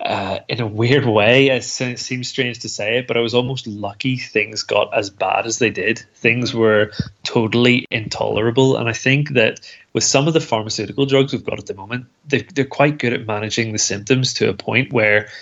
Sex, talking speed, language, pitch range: male, 205 wpm, English, 105-125 Hz